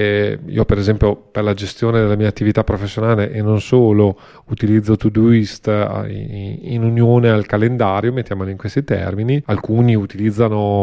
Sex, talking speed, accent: male, 145 wpm, native